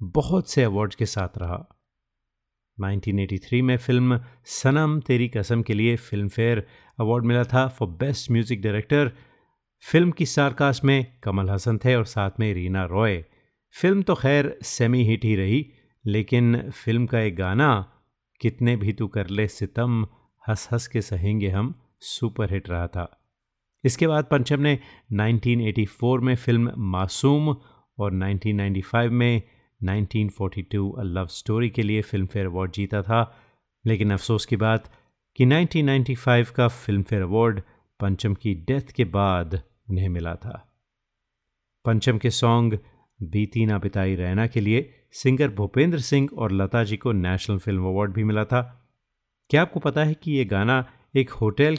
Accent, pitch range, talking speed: native, 100-125 Hz, 150 wpm